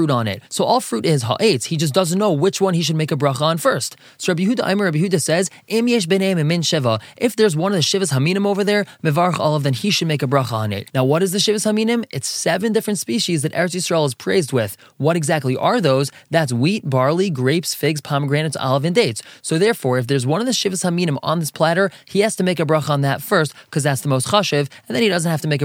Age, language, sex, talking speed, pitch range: 20-39, English, male, 260 wpm, 140-200 Hz